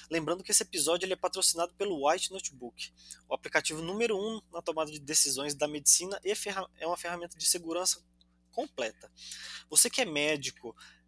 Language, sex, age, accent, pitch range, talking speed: Portuguese, male, 20-39, Brazilian, 135-190 Hz, 160 wpm